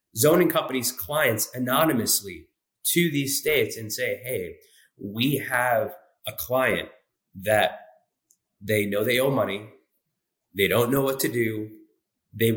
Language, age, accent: English, 30-49, American